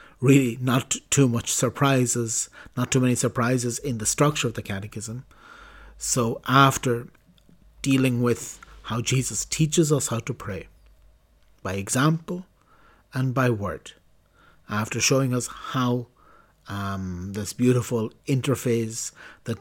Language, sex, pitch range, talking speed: English, male, 115-135 Hz, 120 wpm